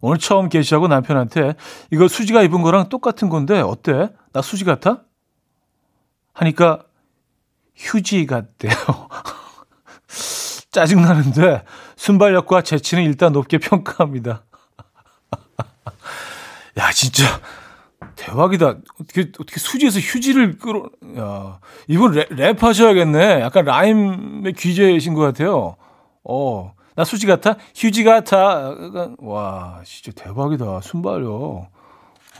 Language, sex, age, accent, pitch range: Korean, male, 40-59, native, 135-185 Hz